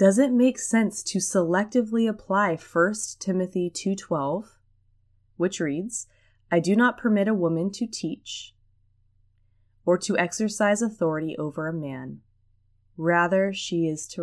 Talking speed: 130 wpm